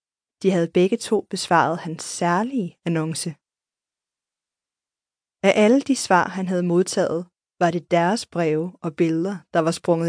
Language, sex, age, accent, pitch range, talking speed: Danish, female, 20-39, native, 170-195 Hz, 145 wpm